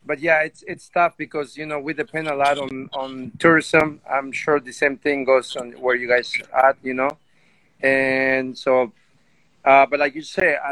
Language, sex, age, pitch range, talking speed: English, male, 40-59, 130-155 Hz, 200 wpm